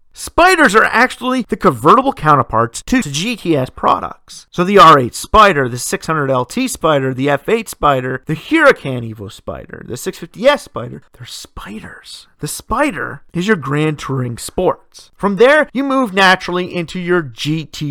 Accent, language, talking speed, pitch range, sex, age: American, English, 145 wpm, 135-215 Hz, male, 30-49